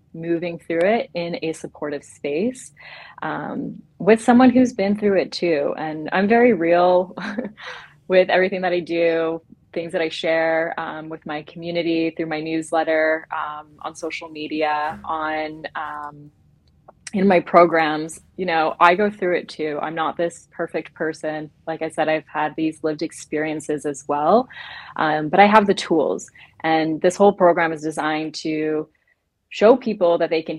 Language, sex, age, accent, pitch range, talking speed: English, female, 20-39, American, 155-185 Hz, 165 wpm